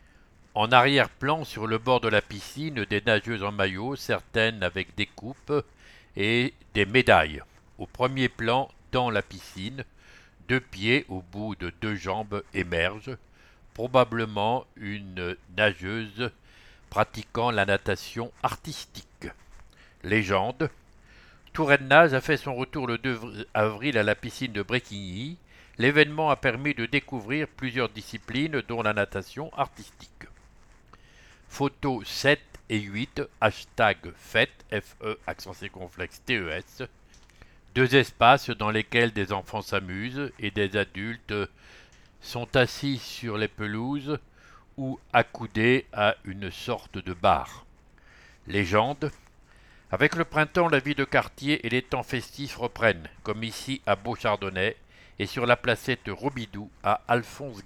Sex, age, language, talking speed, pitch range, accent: male, 60-79, English, 125 wpm, 100-130 Hz, French